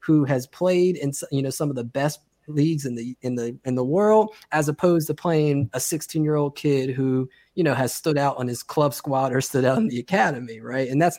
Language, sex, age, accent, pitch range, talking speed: English, male, 20-39, American, 130-170 Hz, 245 wpm